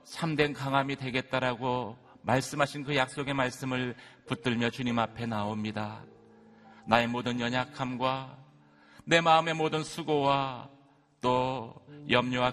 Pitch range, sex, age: 115-145 Hz, male, 40-59